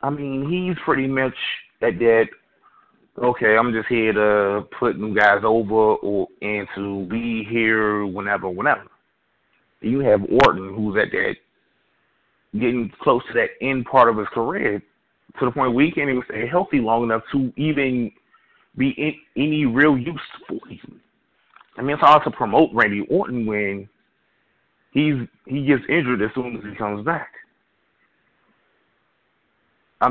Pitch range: 105-140 Hz